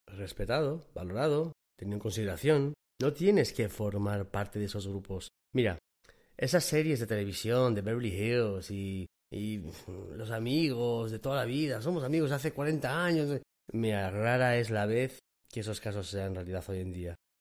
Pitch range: 100-140 Hz